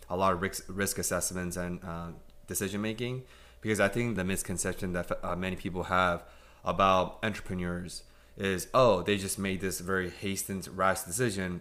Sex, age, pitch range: male, 20-39, 90-100 Hz